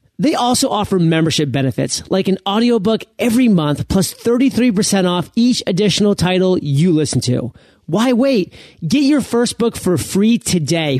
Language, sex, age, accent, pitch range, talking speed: English, male, 30-49, American, 155-225 Hz, 155 wpm